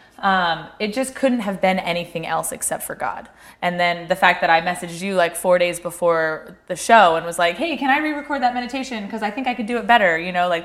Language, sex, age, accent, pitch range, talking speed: English, female, 20-39, American, 180-225 Hz, 255 wpm